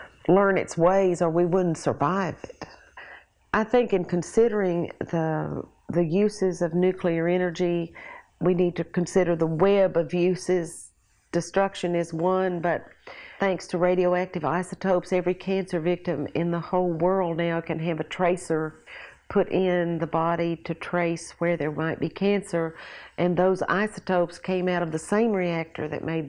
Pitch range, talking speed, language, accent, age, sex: 165-190 Hz, 155 wpm, English, American, 50-69, female